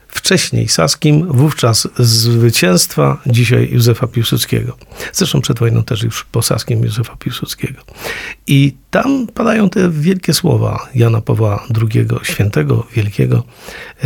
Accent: native